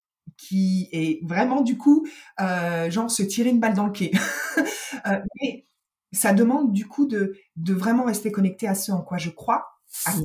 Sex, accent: female, French